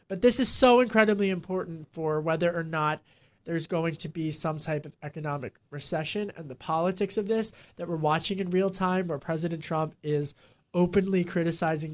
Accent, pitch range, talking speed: American, 155-185 Hz, 180 wpm